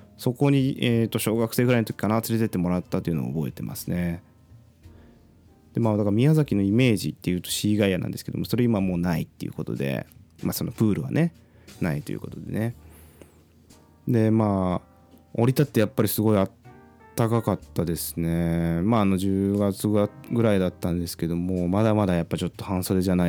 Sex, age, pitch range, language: male, 20-39, 85-115 Hz, Japanese